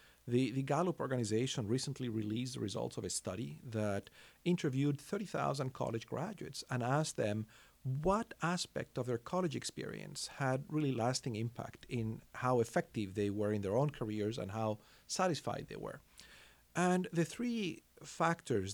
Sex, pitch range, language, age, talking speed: male, 115-150 Hz, English, 40-59, 150 wpm